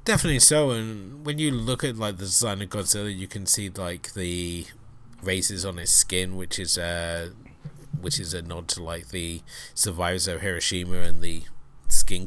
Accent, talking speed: British, 180 wpm